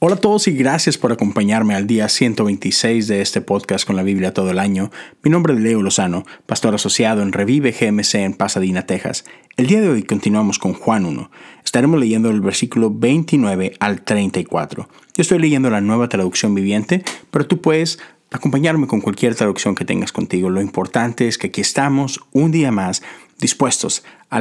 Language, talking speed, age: Spanish, 185 wpm, 30-49